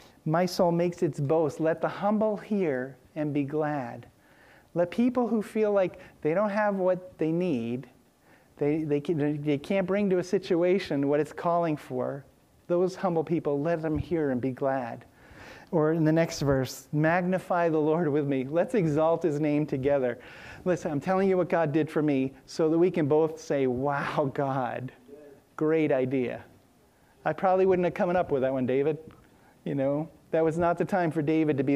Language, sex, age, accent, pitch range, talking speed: English, male, 40-59, American, 140-180 Hz, 185 wpm